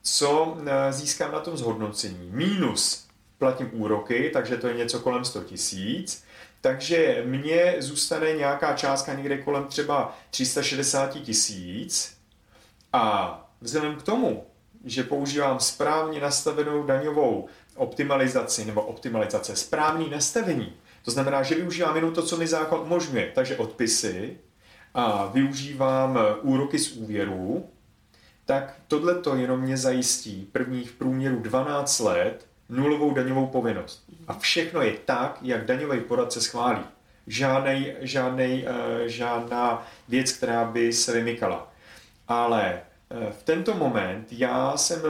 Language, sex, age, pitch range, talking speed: Czech, male, 30-49, 120-155 Hz, 120 wpm